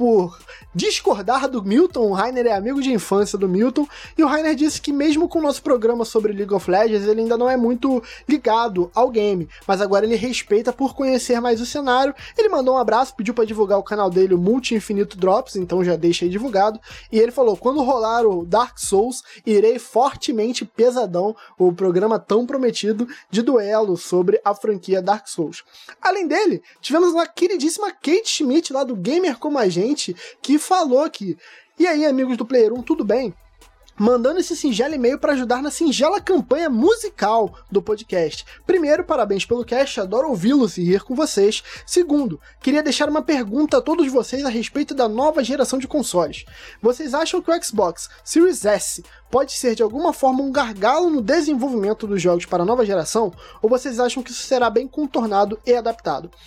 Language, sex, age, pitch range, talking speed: Portuguese, male, 20-39, 215-295 Hz, 185 wpm